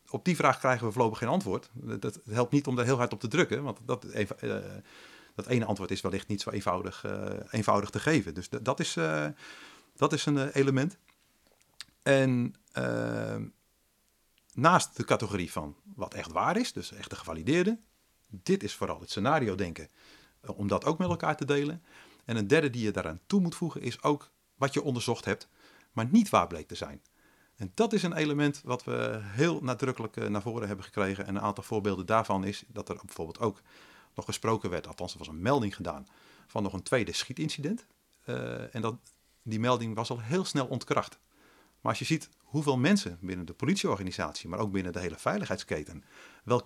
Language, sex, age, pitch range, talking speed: Dutch, male, 40-59, 100-145 Hz, 190 wpm